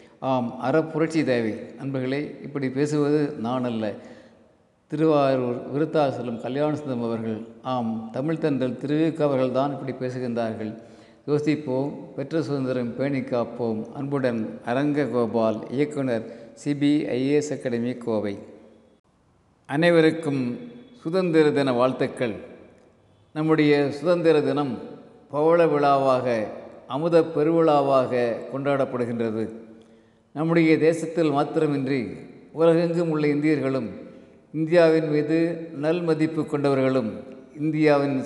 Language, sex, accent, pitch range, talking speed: Tamil, male, native, 120-155 Hz, 85 wpm